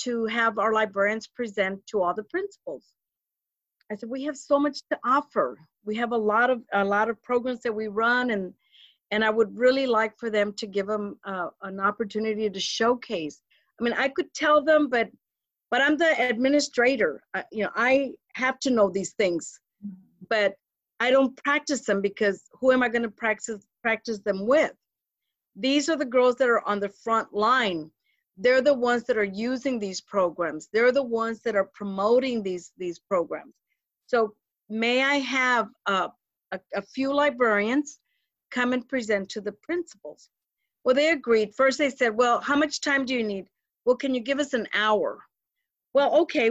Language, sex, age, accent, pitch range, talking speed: English, female, 50-69, American, 205-260 Hz, 185 wpm